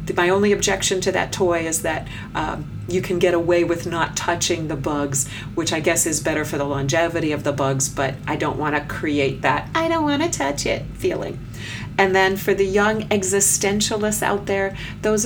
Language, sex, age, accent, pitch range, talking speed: English, female, 40-59, American, 150-195 Hz, 205 wpm